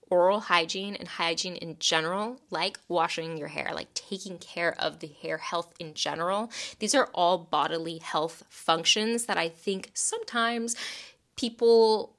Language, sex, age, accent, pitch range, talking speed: English, female, 10-29, American, 180-235 Hz, 150 wpm